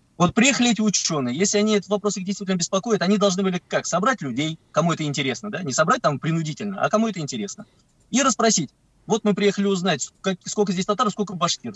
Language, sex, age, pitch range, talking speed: Russian, male, 20-39, 150-210 Hz, 200 wpm